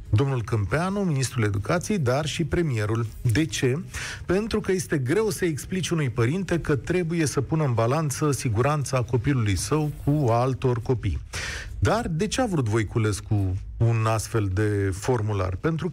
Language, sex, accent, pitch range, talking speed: Romanian, male, native, 115-175 Hz, 160 wpm